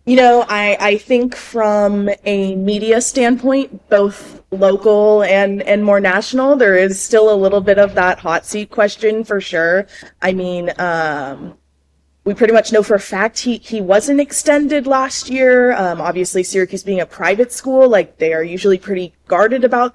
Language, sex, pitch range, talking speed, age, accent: English, female, 180-220 Hz, 175 wpm, 20-39, American